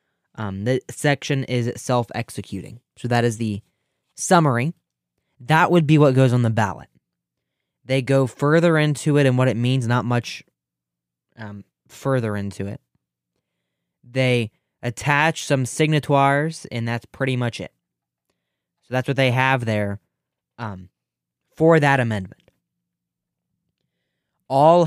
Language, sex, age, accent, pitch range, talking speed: English, male, 20-39, American, 100-140 Hz, 130 wpm